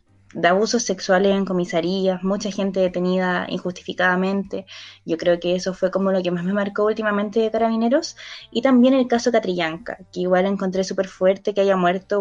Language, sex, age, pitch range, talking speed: Spanish, female, 20-39, 185-230 Hz, 175 wpm